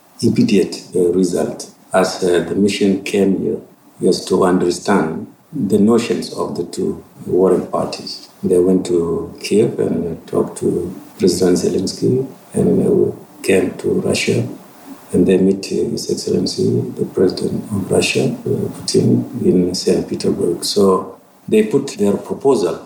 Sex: male